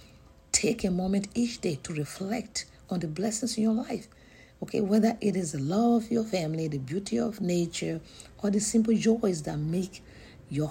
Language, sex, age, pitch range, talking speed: English, female, 60-79, 140-210 Hz, 185 wpm